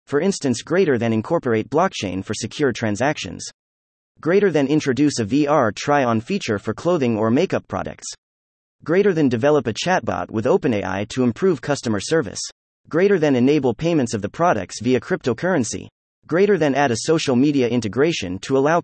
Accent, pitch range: American, 110-155 Hz